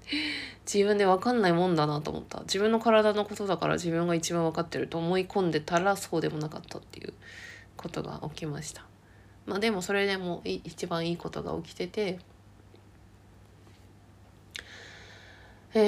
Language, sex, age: Japanese, female, 20-39